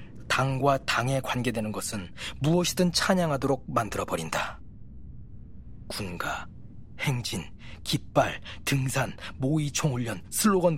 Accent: native